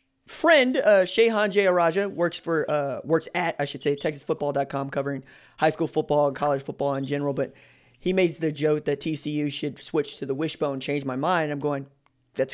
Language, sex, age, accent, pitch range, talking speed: English, male, 30-49, American, 150-205 Hz, 205 wpm